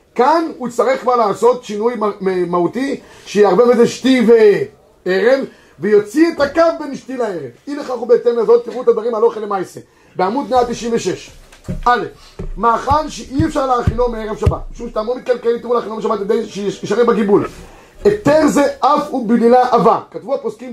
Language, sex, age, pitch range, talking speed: Hebrew, male, 30-49, 215-260 Hz, 155 wpm